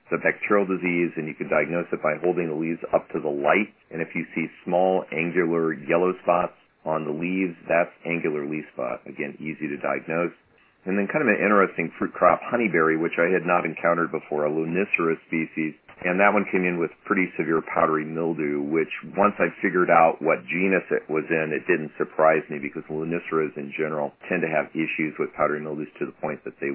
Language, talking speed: English, 210 wpm